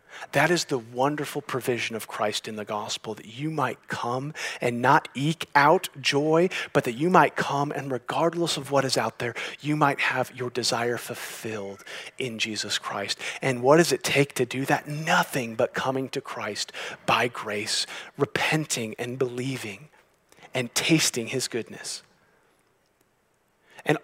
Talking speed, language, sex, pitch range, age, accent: 155 wpm, English, male, 125-150 Hz, 30-49, American